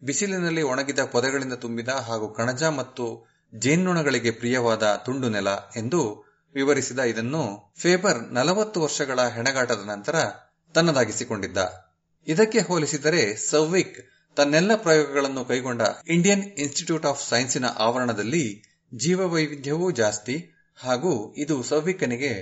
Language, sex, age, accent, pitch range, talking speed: Kannada, male, 30-49, native, 115-160 Hz, 95 wpm